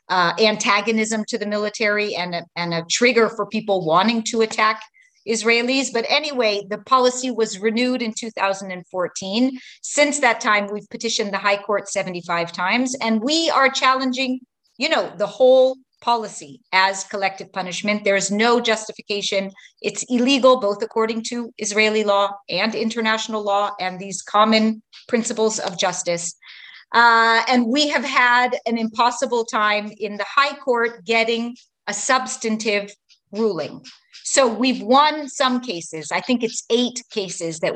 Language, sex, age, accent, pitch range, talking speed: English, female, 40-59, American, 200-245 Hz, 145 wpm